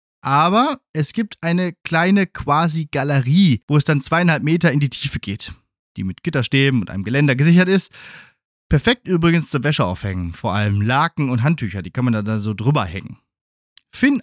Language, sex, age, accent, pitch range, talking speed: German, male, 30-49, German, 125-170 Hz, 175 wpm